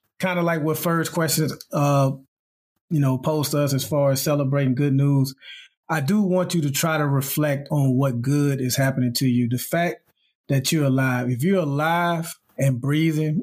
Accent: American